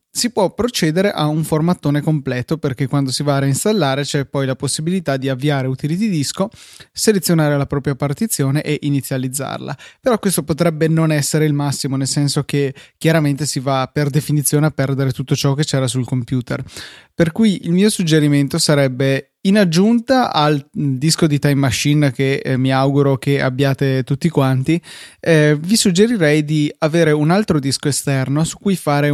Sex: male